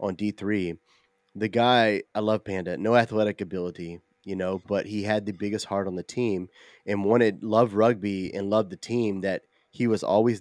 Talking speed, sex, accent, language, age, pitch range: 190 wpm, male, American, English, 30-49, 95-115 Hz